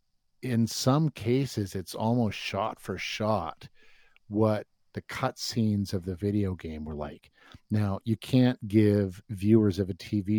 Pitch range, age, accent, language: 95-120 Hz, 50-69, American, English